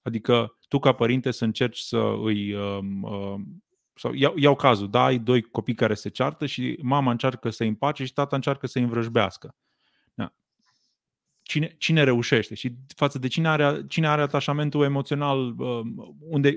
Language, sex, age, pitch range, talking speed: Romanian, male, 30-49, 115-145 Hz, 175 wpm